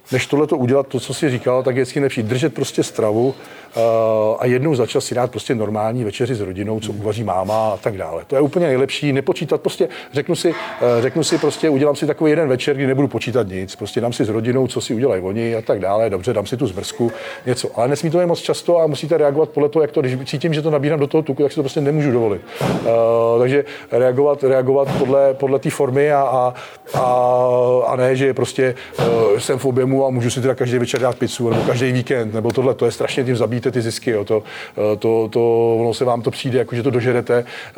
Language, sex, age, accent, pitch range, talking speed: Czech, male, 40-59, native, 120-140 Hz, 230 wpm